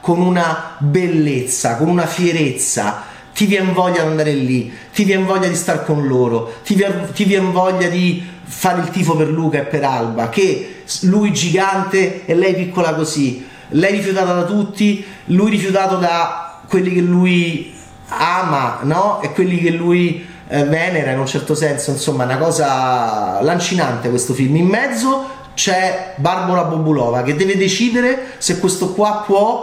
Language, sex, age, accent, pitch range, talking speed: Italian, male, 30-49, native, 145-195 Hz, 155 wpm